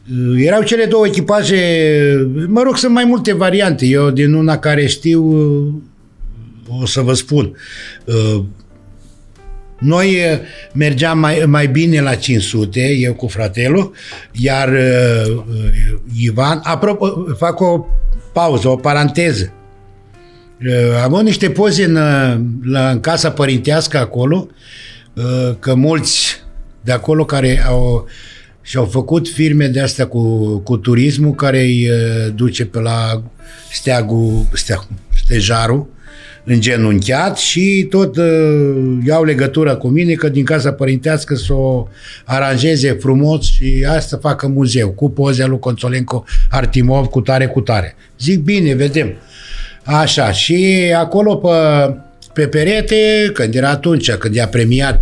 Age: 60-79